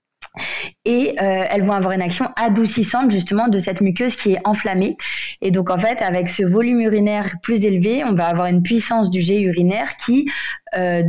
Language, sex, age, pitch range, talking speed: French, female, 20-39, 175-215 Hz, 190 wpm